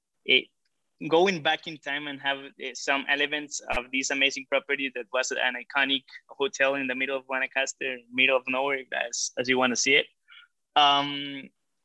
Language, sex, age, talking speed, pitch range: English, male, 20-39, 170 wpm, 130-155 Hz